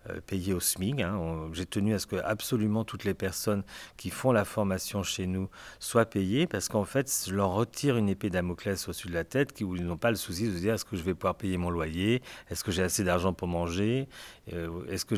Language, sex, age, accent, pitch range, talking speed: French, male, 40-59, French, 95-115 Hz, 235 wpm